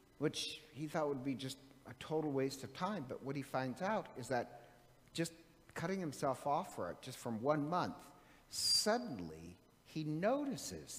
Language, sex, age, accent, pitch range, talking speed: English, male, 50-69, American, 120-170 Hz, 170 wpm